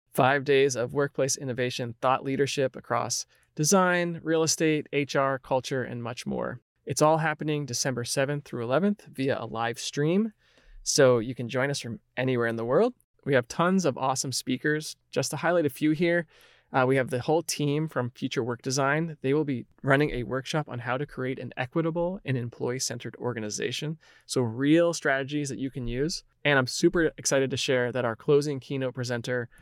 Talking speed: 185 wpm